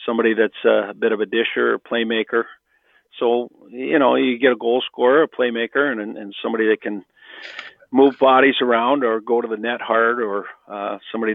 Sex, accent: male, American